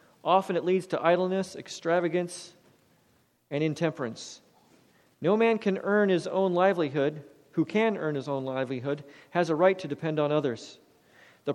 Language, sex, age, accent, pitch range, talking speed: English, male, 40-59, American, 135-180 Hz, 150 wpm